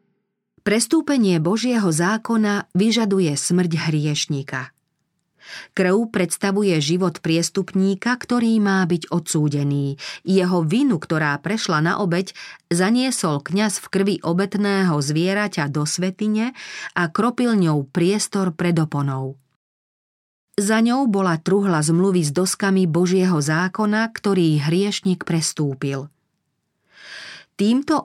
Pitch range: 165-205 Hz